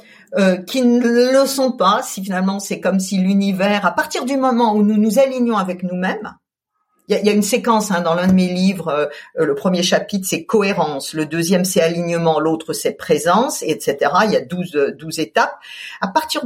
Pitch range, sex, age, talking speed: 190-265 Hz, female, 50-69, 210 wpm